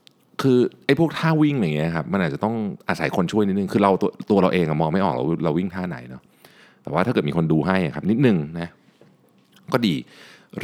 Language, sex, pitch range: Thai, male, 75-100 Hz